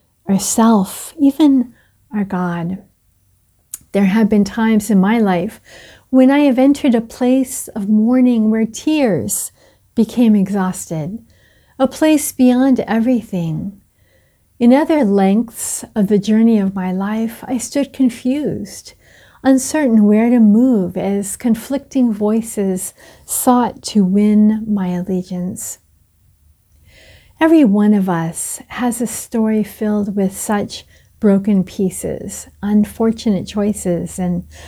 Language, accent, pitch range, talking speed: English, American, 185-250 Hz, 115 wpm